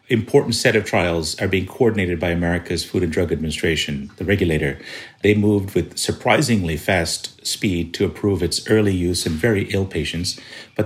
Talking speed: 170 wpm